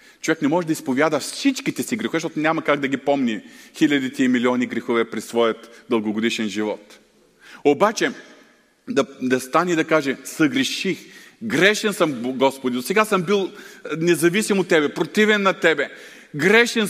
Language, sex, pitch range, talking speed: Bulgarian, male, 130-205 Hz, 155 wpm